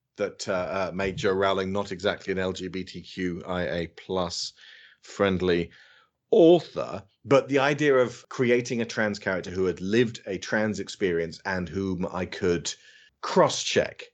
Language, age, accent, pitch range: English, 30-49, British, 95-125 Hz